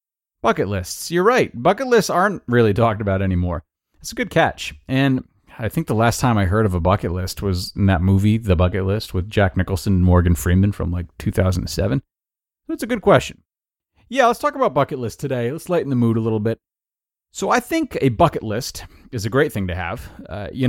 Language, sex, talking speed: English, male, 220 wpm